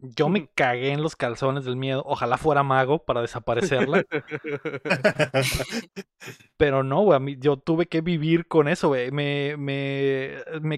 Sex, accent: male, Mexican